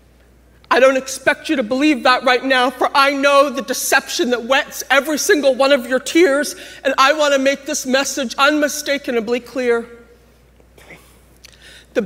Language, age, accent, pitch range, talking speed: English, 40-59, American, 235-290 Hz, 160 wpm